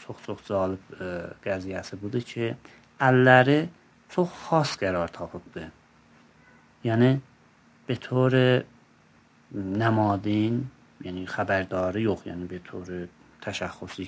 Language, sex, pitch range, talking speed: Persian, male, 95-125 Hz, 90 wpm